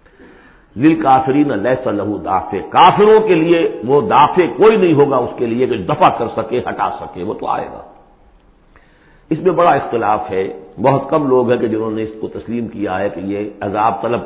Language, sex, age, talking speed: Urdu, male, 60-79, 195 wpm